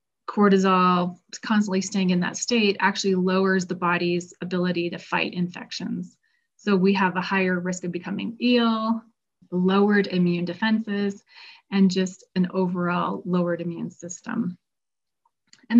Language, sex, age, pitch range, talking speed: English, female, 30-49, 180-205 Hz, 130 wpm